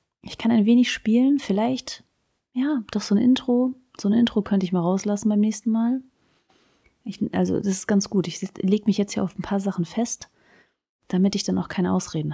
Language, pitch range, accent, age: German, 180-215 Hz, German, 30-49